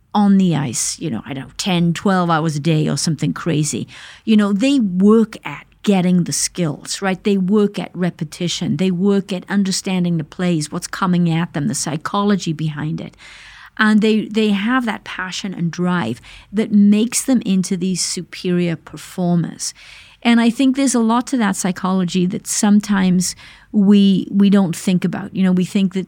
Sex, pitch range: female, 175-210 Hz